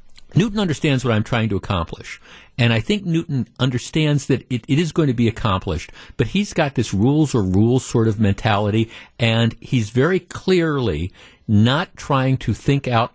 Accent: American